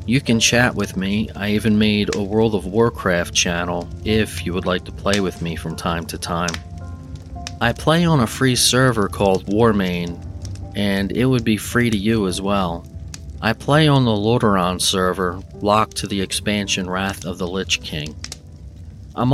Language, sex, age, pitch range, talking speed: English, male, 40-59, 85-110 Hz, 180 wpm